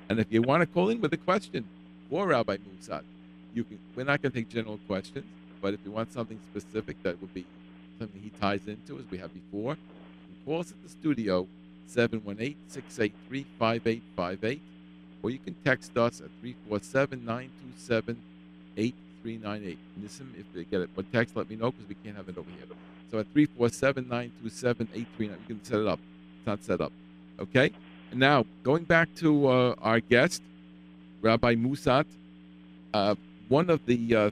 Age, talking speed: 50-69, 175 wpm